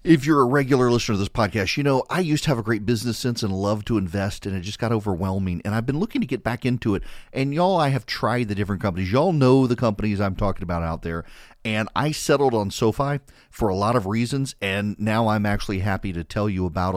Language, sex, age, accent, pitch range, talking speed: English, male, 40-59, American, 105-135 Hz, 255 wpm